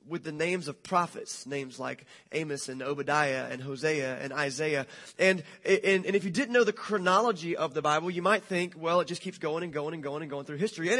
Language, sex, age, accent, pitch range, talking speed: English, male, 30-49, American, 150-205 Hz, 235 wpm